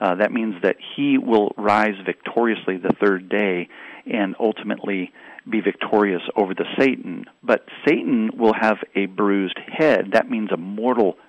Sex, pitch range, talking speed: male, 100-130 Hz, 155 wpm